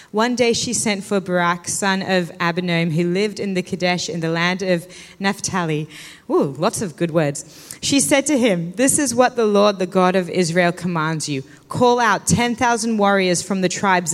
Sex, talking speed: female, 195 wpm